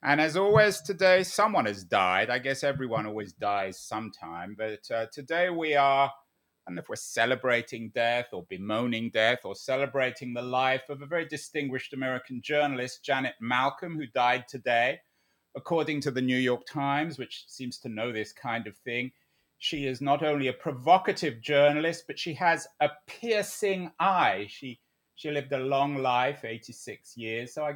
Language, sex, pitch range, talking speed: English, male, 125-165 Hz, 170 wpm